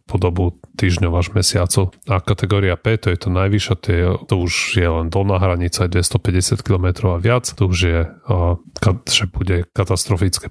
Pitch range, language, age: 90-105 Hz, Slovak, 30-49